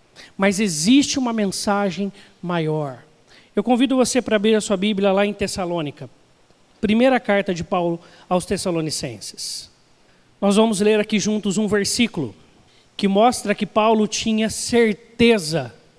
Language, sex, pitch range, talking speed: Portuguese, male, 180-220 Hz, 130 wpm